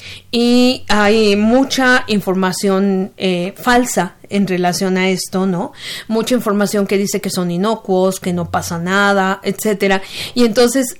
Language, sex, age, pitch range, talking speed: Spanish, female, 40-59, 190-245 Hz, 135 wpm